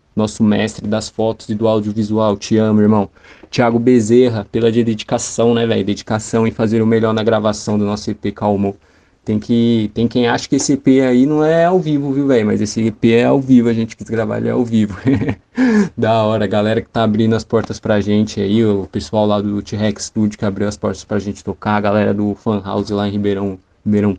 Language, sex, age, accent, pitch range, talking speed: Portuguese, male, 20-39, Brazilian, 105-120 Hz, 220 wpm